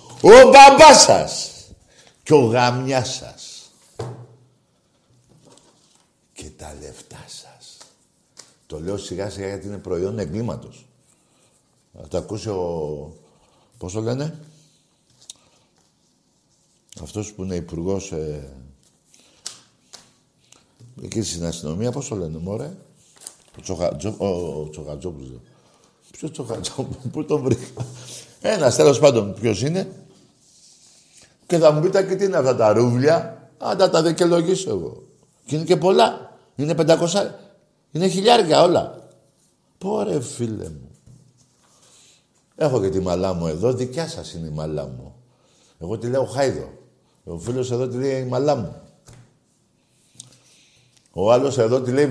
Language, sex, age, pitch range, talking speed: Greek, male, 60-79, 100-160 Hz, 125 wpm